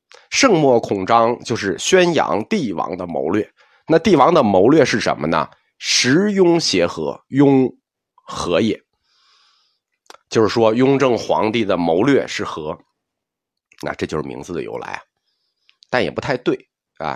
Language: Chinese